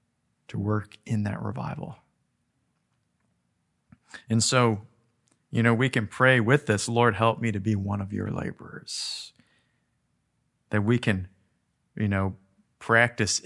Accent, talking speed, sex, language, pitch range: American, 130 wpm, male, English, 105-130 Hz